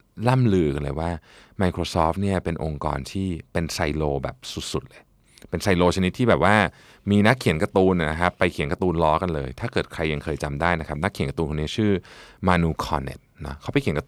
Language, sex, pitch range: Thai, male, 80-110 Hz